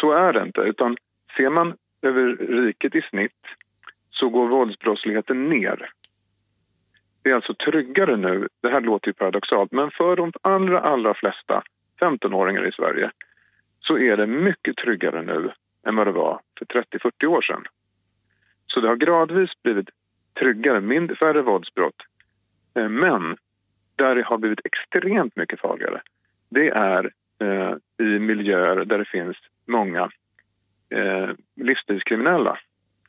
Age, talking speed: 40-59, 135 wpm